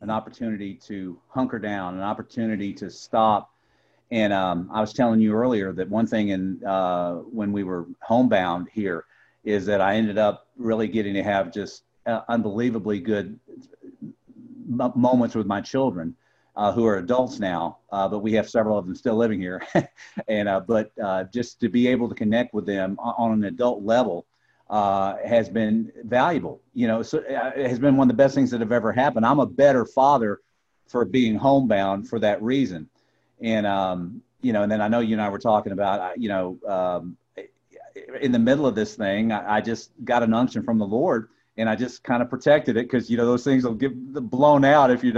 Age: 50-69